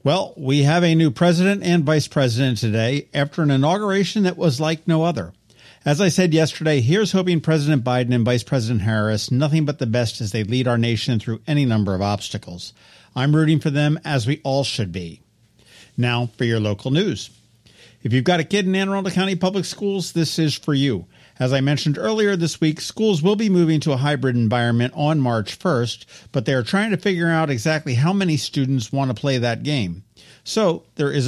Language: English